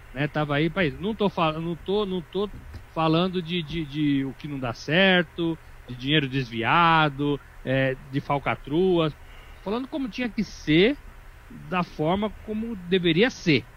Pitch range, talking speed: 135-190 Hz, 155 wpm